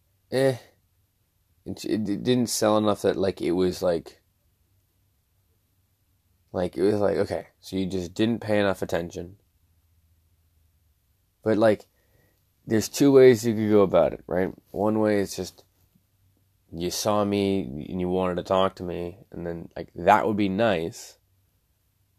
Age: 20-39